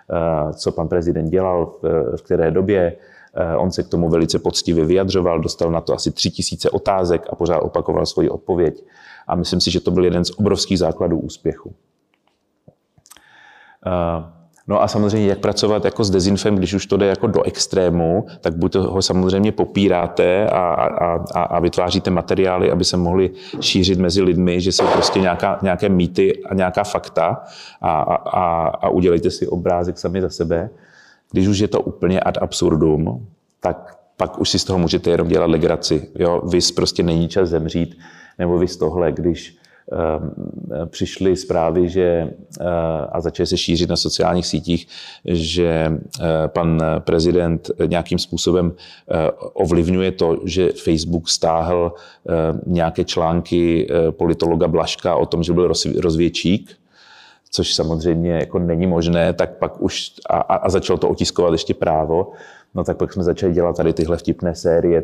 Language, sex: Czech, male